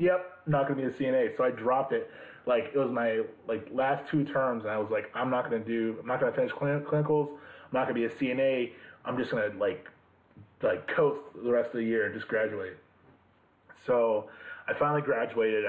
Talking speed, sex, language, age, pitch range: 215 wpm, male, English, 20-39, 110-160 Hz